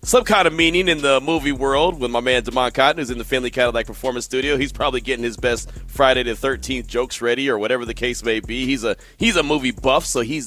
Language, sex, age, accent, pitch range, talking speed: English, male, 30-49, American, 110-135 Hz, 250 wpm